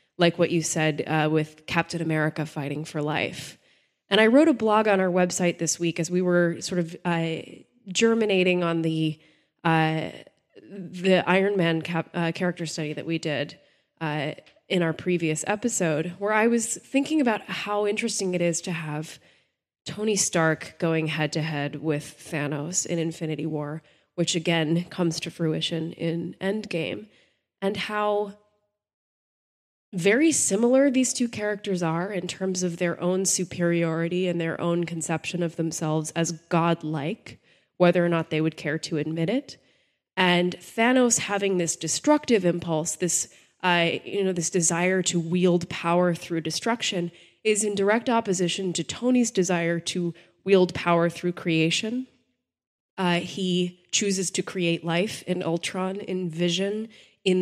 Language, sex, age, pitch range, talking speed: English, female, 20-39, 165-190 Hz, 150 wpm